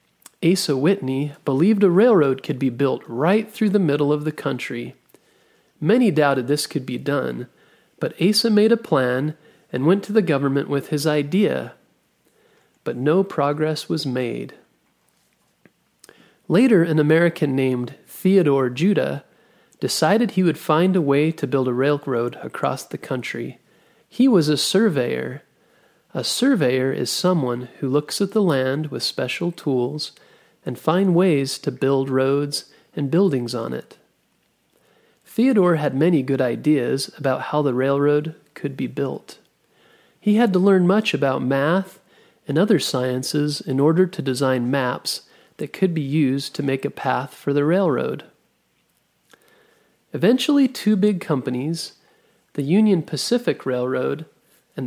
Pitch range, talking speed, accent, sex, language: 135-185 Hz, 145 wpm, American, male, English